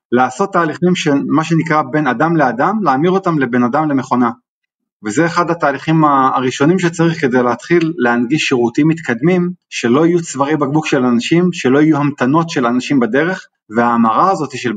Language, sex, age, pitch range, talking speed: Hebrew, male, 30-49, 125-170 Hz, 155 wpm